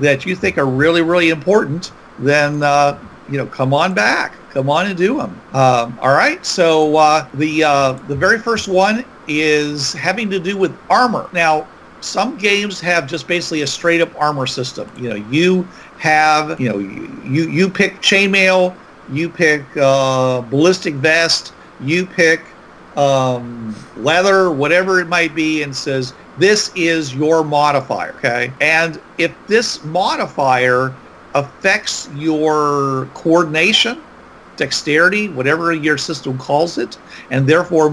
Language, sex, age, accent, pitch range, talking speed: English, male, 50-69, American, 140-185 Hz, 145 wpm